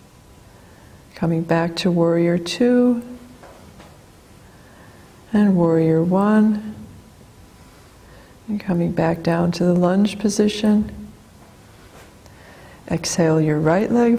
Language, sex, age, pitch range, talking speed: English, female, 50-69, 160-220 Hz, 85 wpm